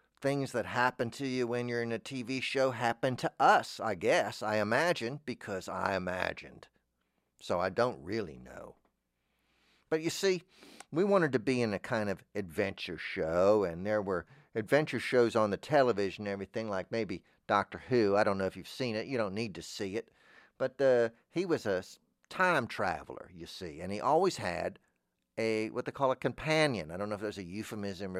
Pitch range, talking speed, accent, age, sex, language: 100-130 Hz, 195 wpm, American, 50-69, male, English